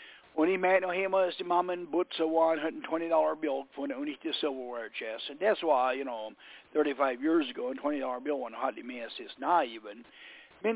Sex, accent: male, American